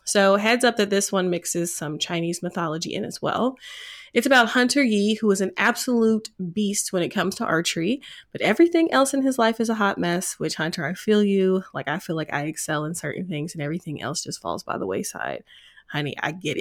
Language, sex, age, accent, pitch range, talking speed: English, female, 20-39, American, 175-245 Hz, 225 wpm